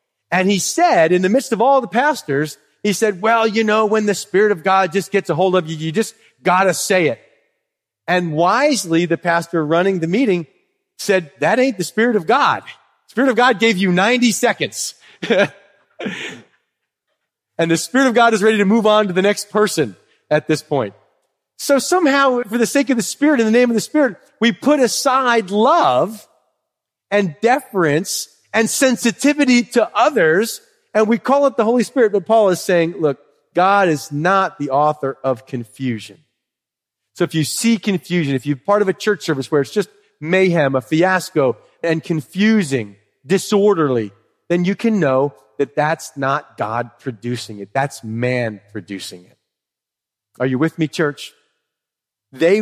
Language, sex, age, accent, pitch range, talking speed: English, male, 40-59, American, 150-225 Hz, 175 wpm